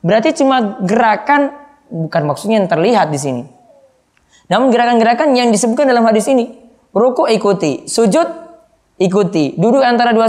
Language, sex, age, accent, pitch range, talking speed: Indonesian, female, 20-39, native, 195-270 Hz, 135 wpm